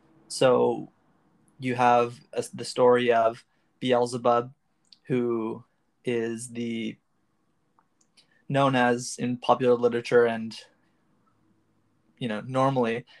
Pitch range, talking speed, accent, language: 115-125 Hz, 85 wpm, American, English